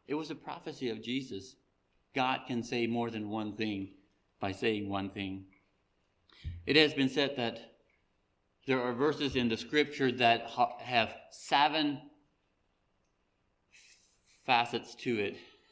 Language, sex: English, male